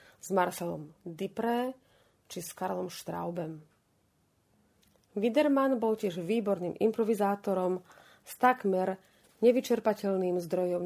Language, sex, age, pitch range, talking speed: Slovak, female, 30-49, 175-230 Hz, 90 wpm